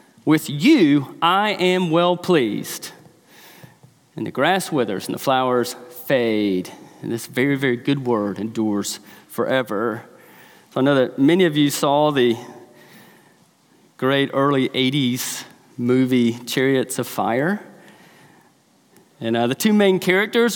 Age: 40-59